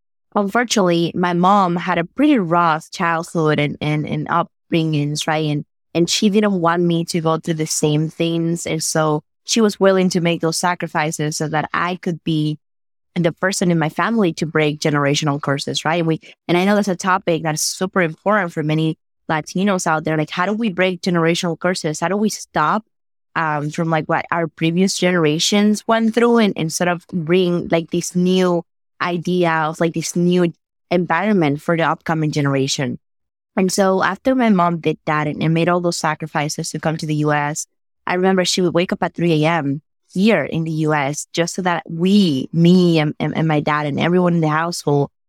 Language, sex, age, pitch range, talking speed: English, female, 20-39, 155-185 Hz, 195 wpm